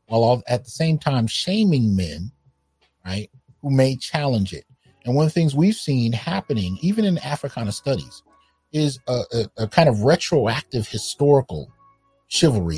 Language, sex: English, male